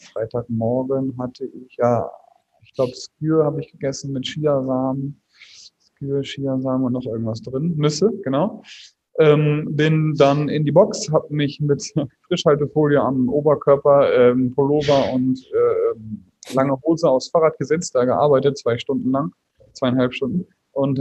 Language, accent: German, German